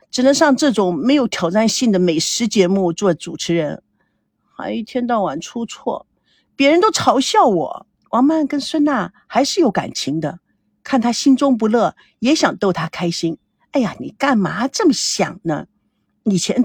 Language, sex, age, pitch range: Chinese, female, 50-69, 200-285 Hz